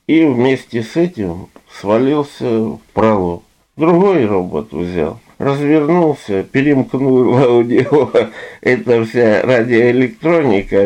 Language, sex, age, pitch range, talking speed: Russian, male, 50-69, 95-125 Hz, 95 wpm